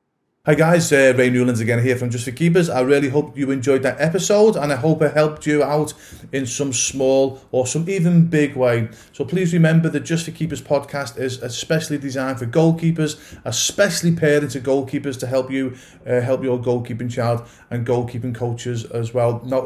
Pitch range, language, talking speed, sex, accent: 125-150 Hz, English, 195 wpm, male, British